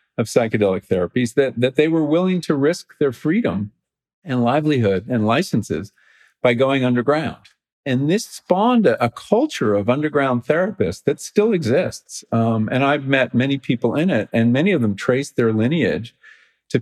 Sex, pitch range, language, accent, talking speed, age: male, 110-145 Hz, English, American, 170 wpm, 50-69